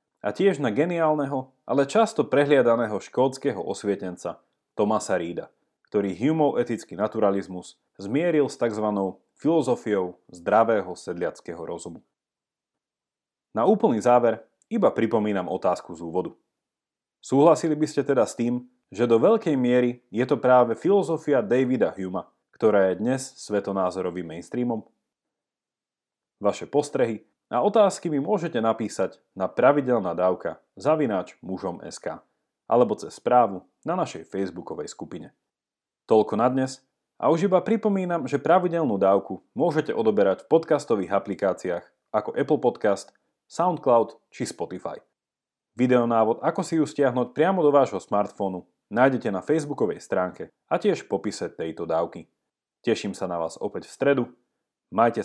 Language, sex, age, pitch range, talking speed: Slovak, male, 30-49, 100-145 Hz, 130 wpm